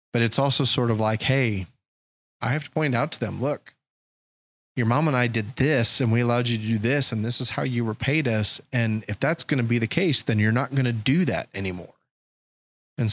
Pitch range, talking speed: 110-130 Hz, 240 wpm